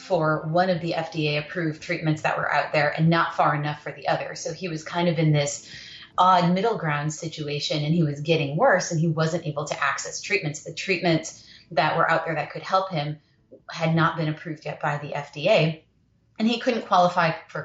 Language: English